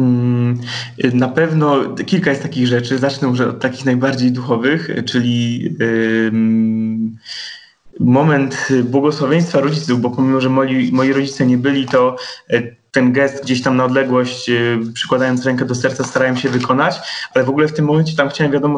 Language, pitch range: Polish, 125-145 Hz